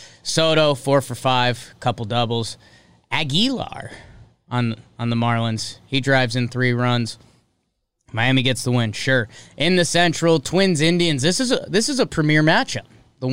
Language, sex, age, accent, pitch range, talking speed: English, male, 20-39, American, 120-160 Hz, 145 wpm